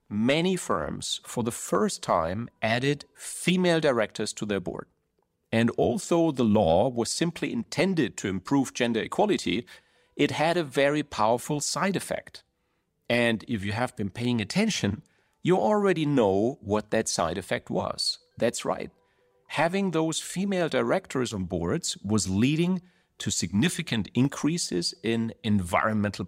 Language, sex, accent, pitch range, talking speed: Italian, male, German, 105-165 Hz, 135 wpm